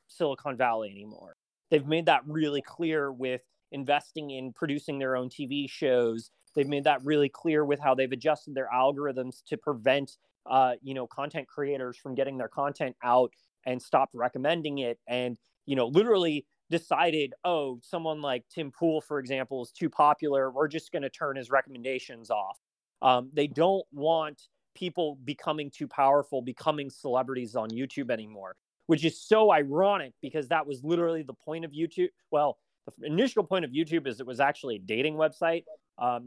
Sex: male